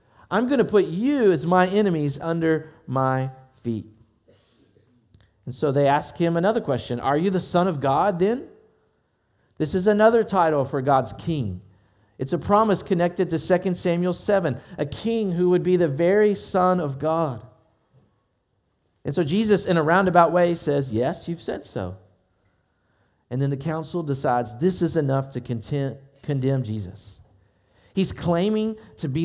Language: English